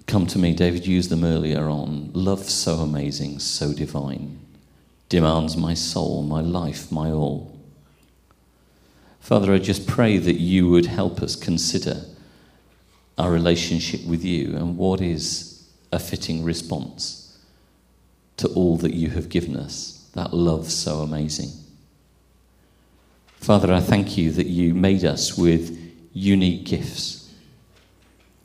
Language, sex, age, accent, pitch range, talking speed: English, male, 40-59, British, 80-95 Hz, 130 wpm